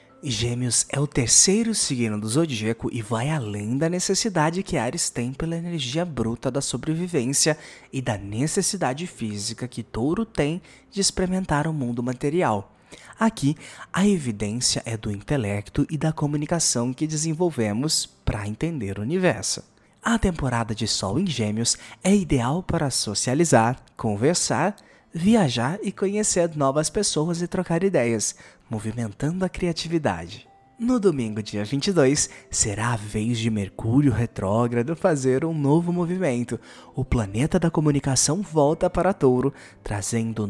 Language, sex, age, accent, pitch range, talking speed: Portuguese, male, 20-39, Brazilian, 115-170 Hz, 135 wpm